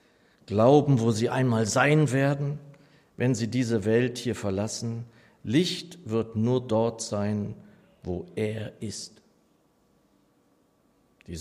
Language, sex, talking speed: German, male, 110 wpm